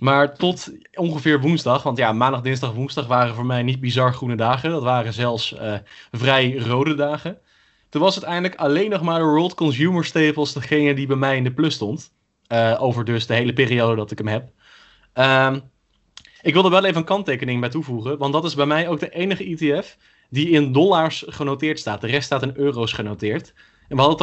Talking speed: 210 wpm